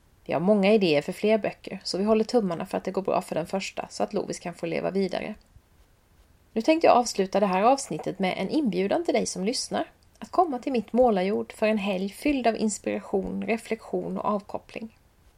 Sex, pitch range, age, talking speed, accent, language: female, 160-225 Hz, 30-49, 210 wpm, native, Swedish